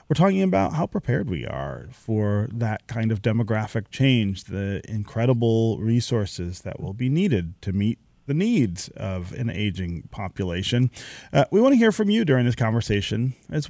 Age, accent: 30-49, American